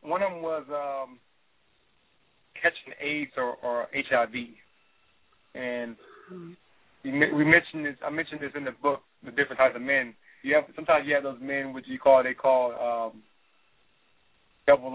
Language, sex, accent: English, male, American